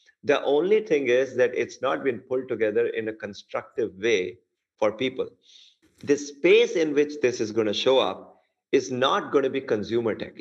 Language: English